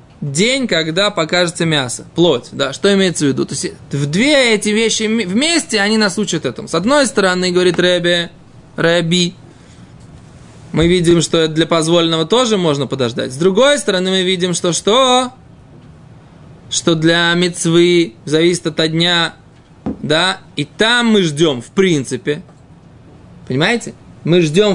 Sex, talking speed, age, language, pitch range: male, 140 wpm, 20-39, Russian, 160-225 Hz